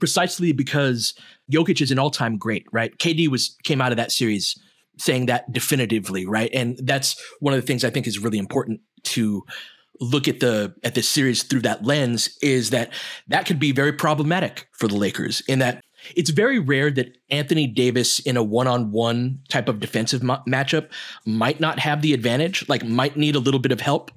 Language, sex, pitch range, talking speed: English, male, 115-150 Hz, 195 wpm